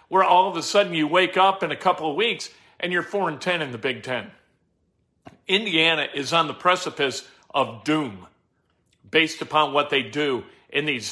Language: English